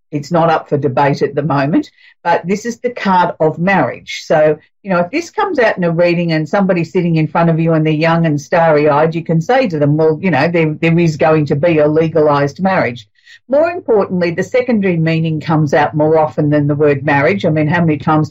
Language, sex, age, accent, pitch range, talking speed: English, female, 50-69, Australian, 155-195 Hz, 235 wpm